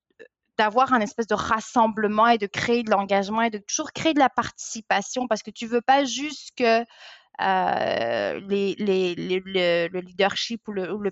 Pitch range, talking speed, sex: 185-230 Hz, 190 wpm, female